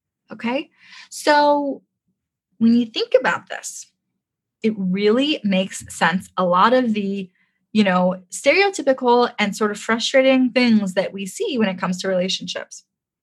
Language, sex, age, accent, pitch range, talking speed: English, female, 10-29, American, 185-255 Hz, 140 wpm